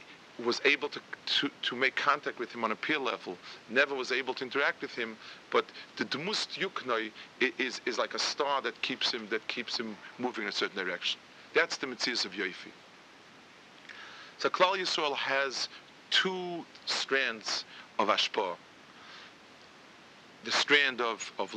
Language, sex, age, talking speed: English, male, 40-59, 160 wpm